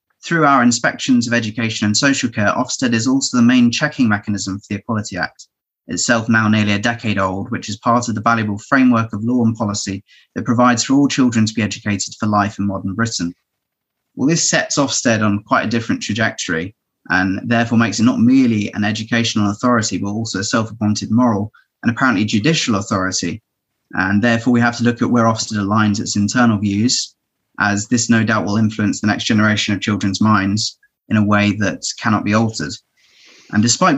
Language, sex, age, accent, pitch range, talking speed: English, male, 30-49, British, 105-120 Hz, 195 wpm